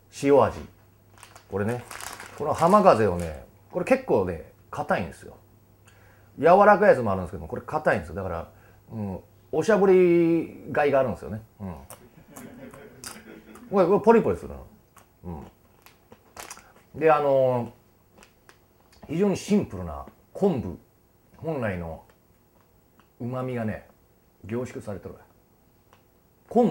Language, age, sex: Japanese, 40-59, male